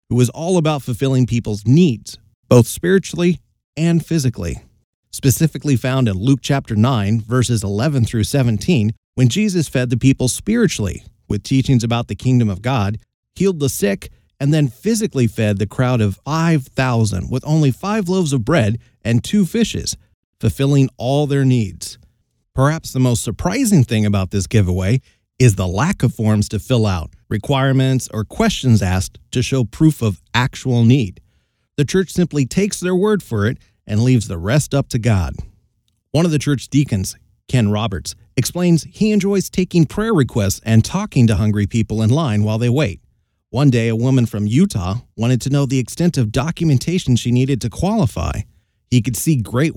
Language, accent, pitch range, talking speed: English, American, 105-145 Hz, 170 wpm